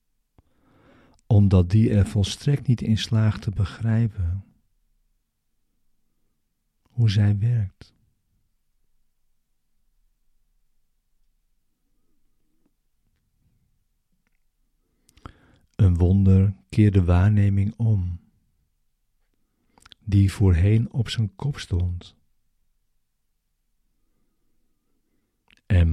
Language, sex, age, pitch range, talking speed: Dutch, male, 50-69, 95-110 Hz, 60 wpm